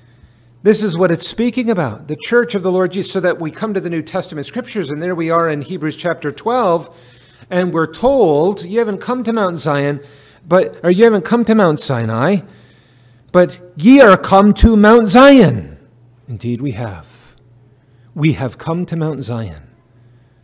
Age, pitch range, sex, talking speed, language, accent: 40-59, 120-165 Hz, male, 180 wpm, English, American